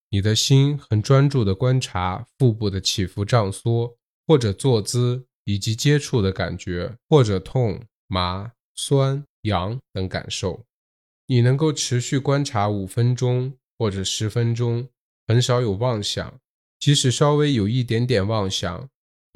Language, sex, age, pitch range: Chinese, male, 20-39, 100-130 Hz